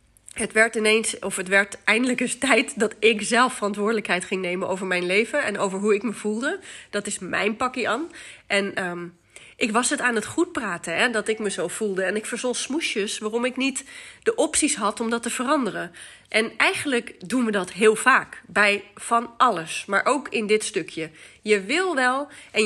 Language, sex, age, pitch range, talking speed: Dutch, female, 30-49, 200-260 Hz, 205 wpm